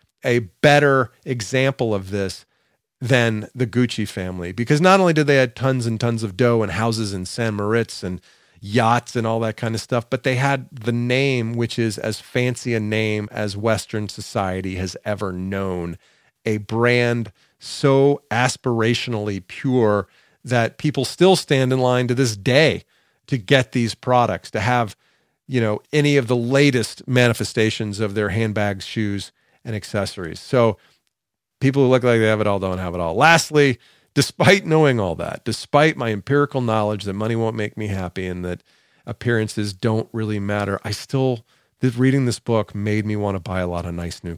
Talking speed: 180 wpm